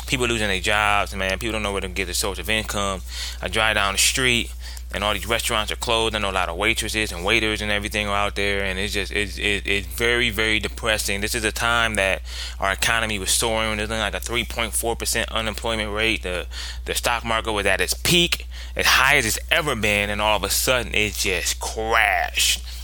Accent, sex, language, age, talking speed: American, male, English, 20-39, 225 wpm